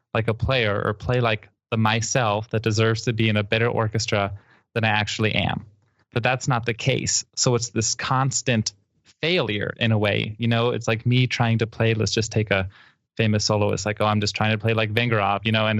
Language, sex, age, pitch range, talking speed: English, male, 20-39, 110-125 Hz, 225 wpm